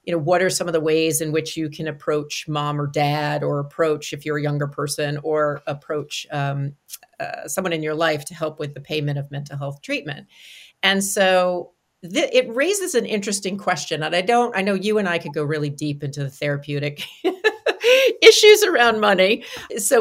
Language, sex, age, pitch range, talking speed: English, female, 50-69, 150-210 Hz, 200 wpm